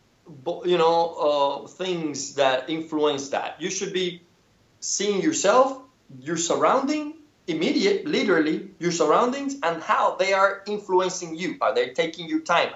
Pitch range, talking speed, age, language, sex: 150-230 Hz, 135 wpm, 30-49, English, male